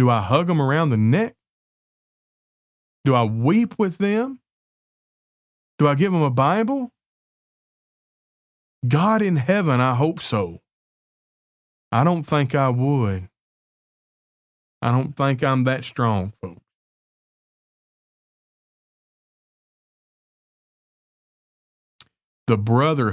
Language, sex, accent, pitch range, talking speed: English, male, American, 105-140 Hz, 100 wpm